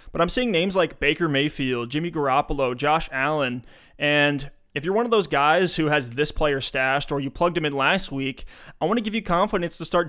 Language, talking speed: English, 225 wpm